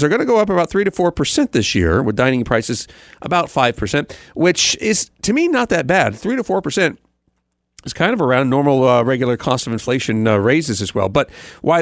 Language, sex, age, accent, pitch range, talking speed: English, male, 40-59, American, 115-165 Hz, 215 wpm